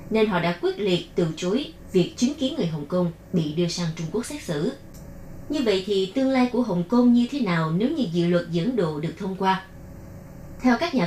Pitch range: 175-240 Hz